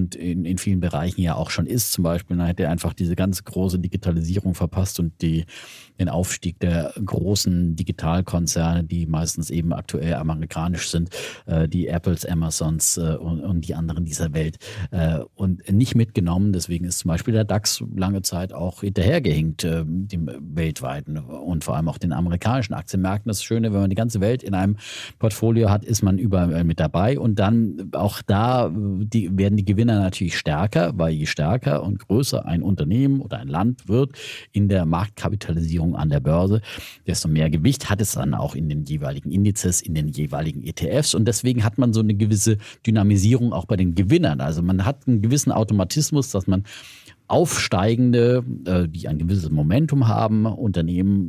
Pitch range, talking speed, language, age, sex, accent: 85-110 Hz, 180 wpm, German, 40-59, male, German